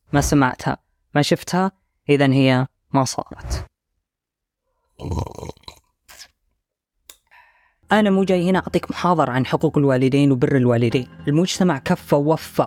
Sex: female